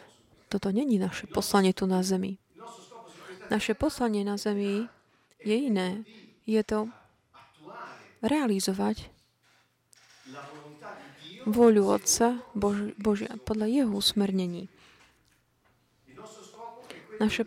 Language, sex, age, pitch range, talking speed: Slovak, female, 30-49, 195-235 Hz, 80 wpm